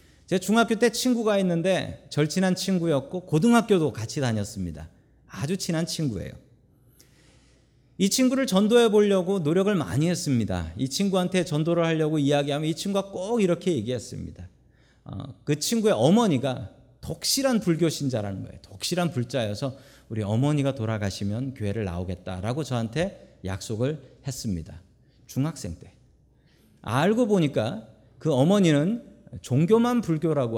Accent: native